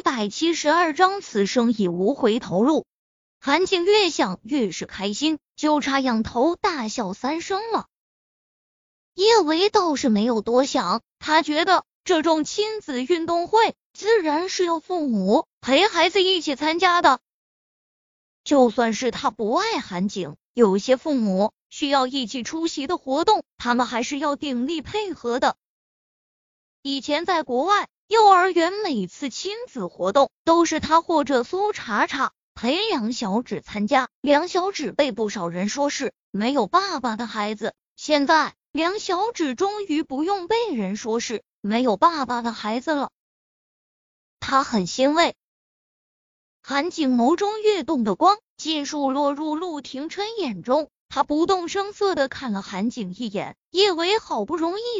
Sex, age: female, 20-39